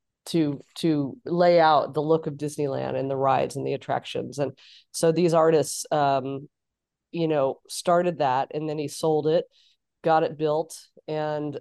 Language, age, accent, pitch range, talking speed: English, 30-49, American, 145-165 Hz, 165 wpm